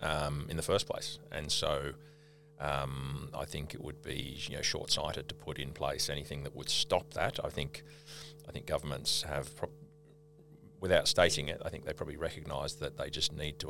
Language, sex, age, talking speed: English, male, 40-59, 195 wpm